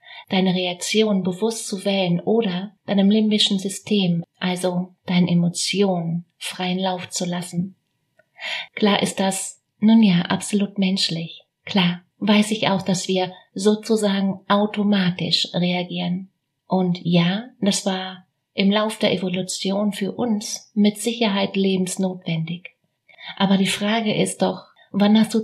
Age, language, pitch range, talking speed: 30-49, German, 180-205 Hz, 125 wpm